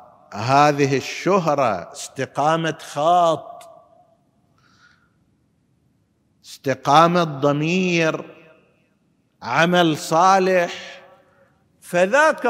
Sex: male